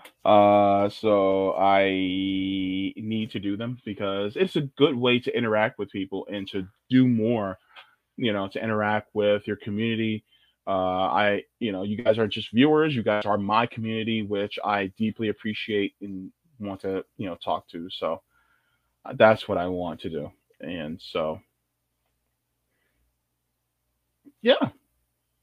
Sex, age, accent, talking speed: male, 20-39, American, 145 wpm